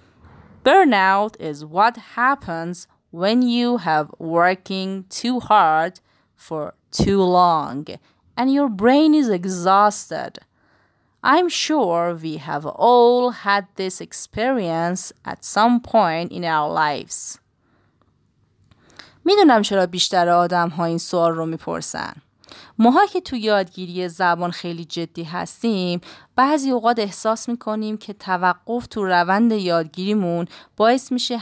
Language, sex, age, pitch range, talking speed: English, female, 30-49, 175-230 Hz, 105 wpm